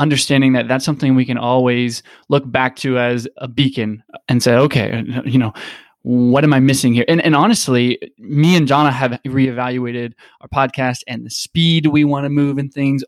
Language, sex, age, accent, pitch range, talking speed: English, male, 20-39, American, 125-145 Hz, 195 wpm